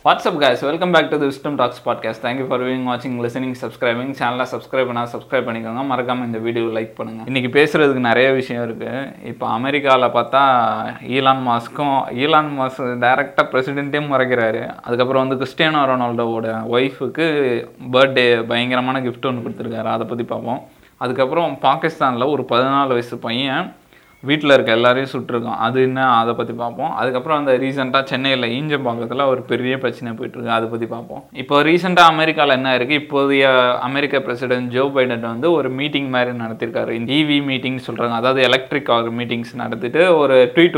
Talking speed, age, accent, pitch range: 155 wpm, 20-39, native, 120-140 Hz